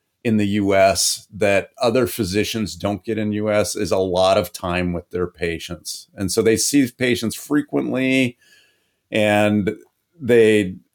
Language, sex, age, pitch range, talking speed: English, male, 40-59, 95-115 Hz, 145 wpm